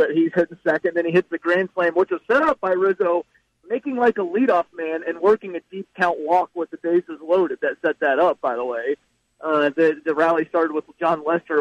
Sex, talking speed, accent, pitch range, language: male, 240 wpm, American, 155-180 Hz, English